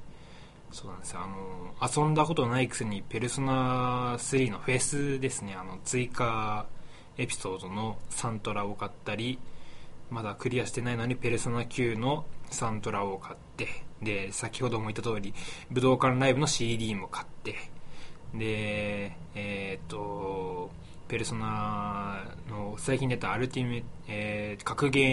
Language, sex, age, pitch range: Japanese, male, 20-39, 95-130 Hz